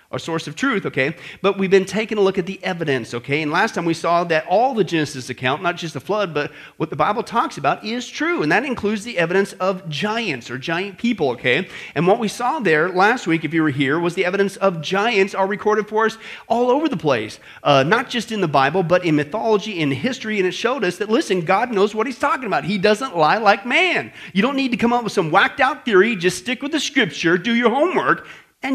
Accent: American